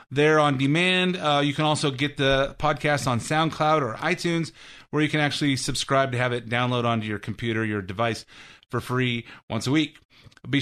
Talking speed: 190 wpm